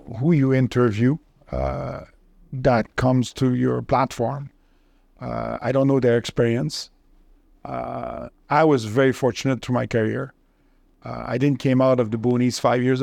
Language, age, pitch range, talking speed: English, 50-69, 120-145 Hz, 150 wpm